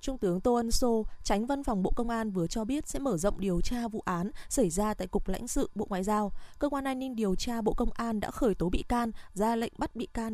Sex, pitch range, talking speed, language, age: female, 195-255 Hz, 285 wpm, Vietnamese, 20-39